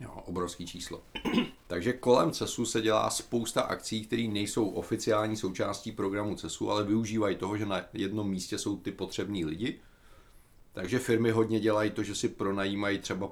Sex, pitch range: male, 90-110 Hz